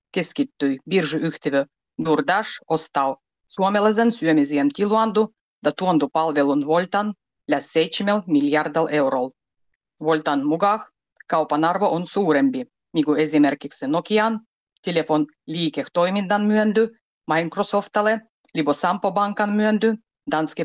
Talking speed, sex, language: 85 wpm, female, Finnish